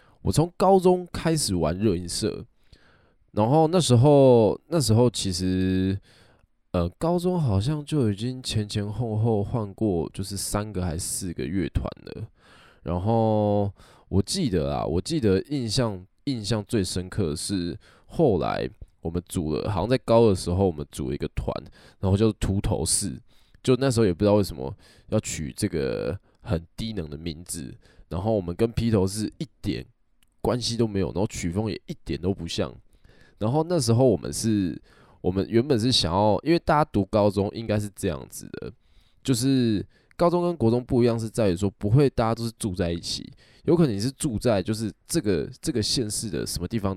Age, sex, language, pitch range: 20-39, male, Chinese, 90-115 Hz